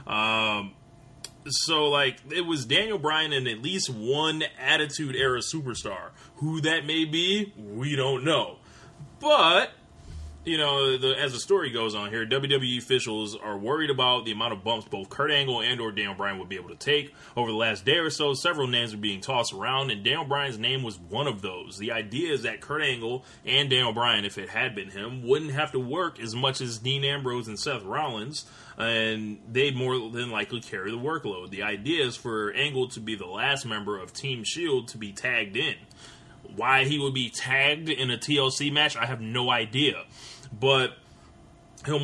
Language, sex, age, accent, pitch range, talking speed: English, male, 20-39, American, 110-140 Hz, 195 wpm